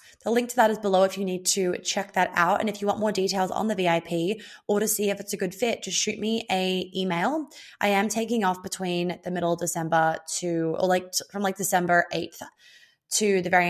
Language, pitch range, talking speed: English, 175-210 Hz, 235 wpm